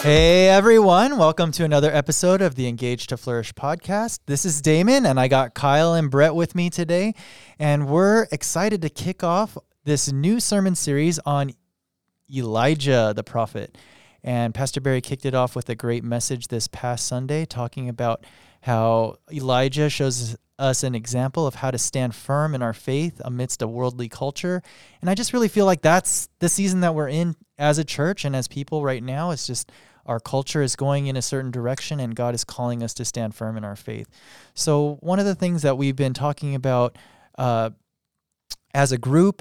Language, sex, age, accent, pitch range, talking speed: English, male, 20-39, American, 125-155 Hz, 190 wpm